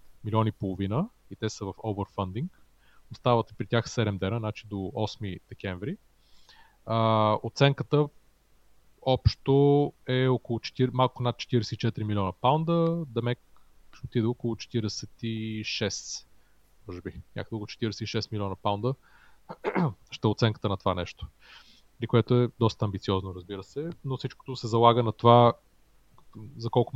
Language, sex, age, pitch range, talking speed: Bulgarian, male, 30-49, 105-125 Hz, 135 wpm